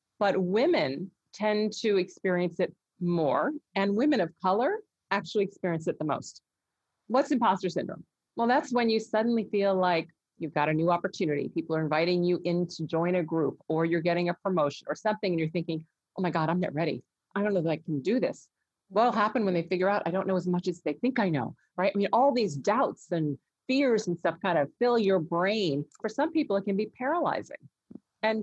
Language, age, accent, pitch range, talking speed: English, 40-59, American, 170-215 Hz, 215 wpm